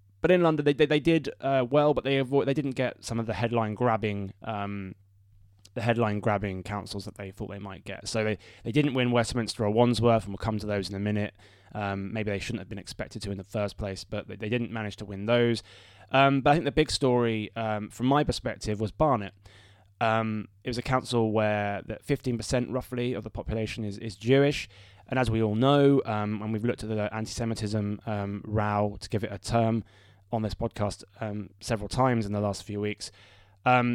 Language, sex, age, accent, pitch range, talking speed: English, male, 20-39, British, 105-125 Hz, 225 wpm